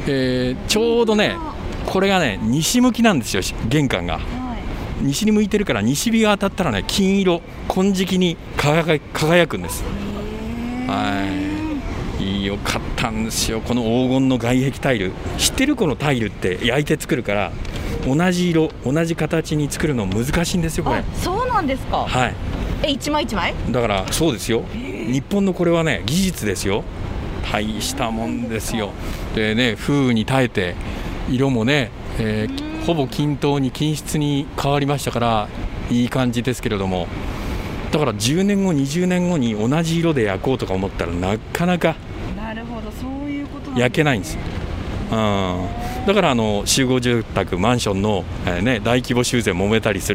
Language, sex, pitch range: Japanese, male, 100-155 Hz